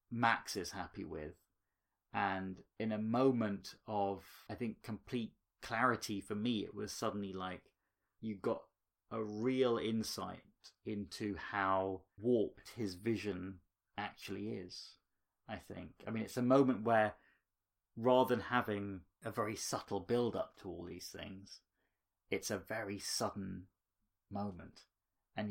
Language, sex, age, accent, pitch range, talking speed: English, male, 30-49, British, 95-110 Hz, 130 wpm